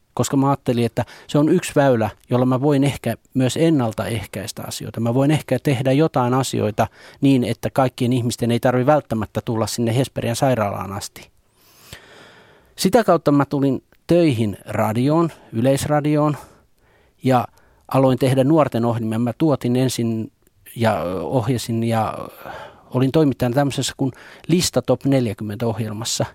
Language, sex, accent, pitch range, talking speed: Finnish, male, native, 115-145 Hz, 130 wpm